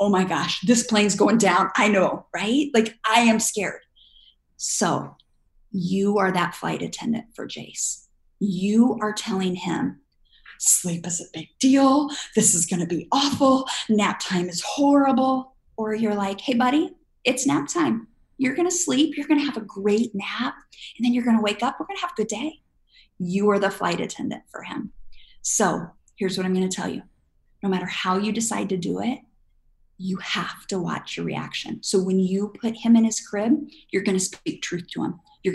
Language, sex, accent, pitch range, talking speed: English, female, American, 185-245 Hz, 200 wpm